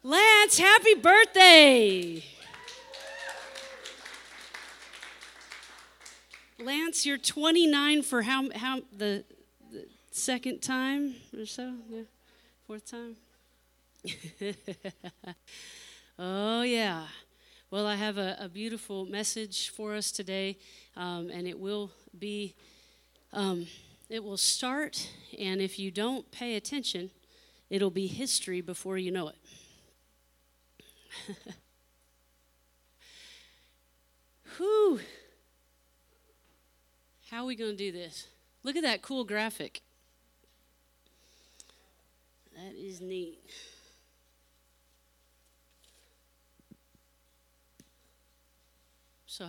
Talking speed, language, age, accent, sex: 85 wpm, English, 40-59, American, female